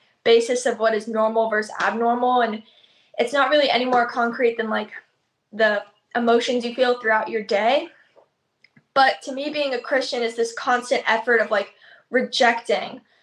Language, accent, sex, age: English, American, female, 10-29